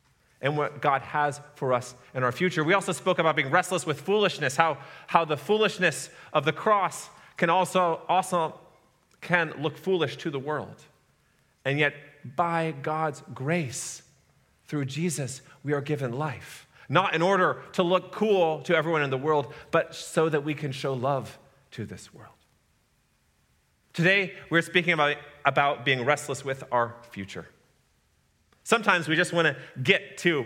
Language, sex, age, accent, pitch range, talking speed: English, male, 30-49, American, 140-180 Hz, 160 wpm